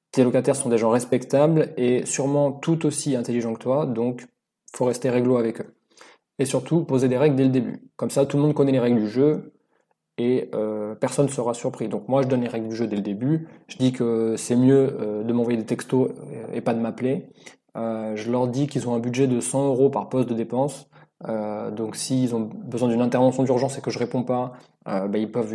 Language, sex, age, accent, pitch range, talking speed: French, male, 20-39, French, 115-135 Hz, 235 wpm